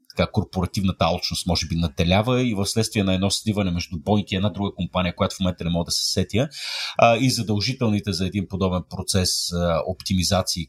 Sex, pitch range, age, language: male, 95-120 Hz, 30-49, Bulgarian